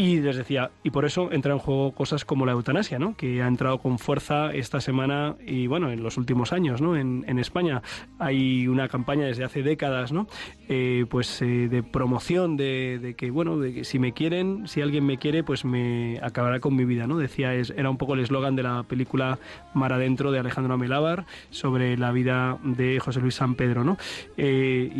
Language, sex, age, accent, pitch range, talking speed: Spanish, male, 20-39, Spanish, 125-145 Hz, 210 wpm